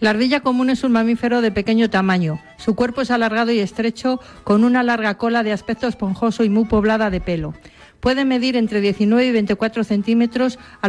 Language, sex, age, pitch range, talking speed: Spanish, female, 50-69, 200-235 Hz, 195 wpm